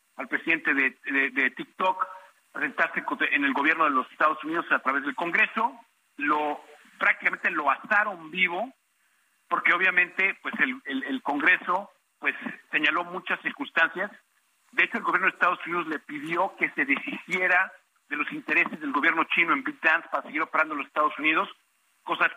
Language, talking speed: Spanish, 170 wpm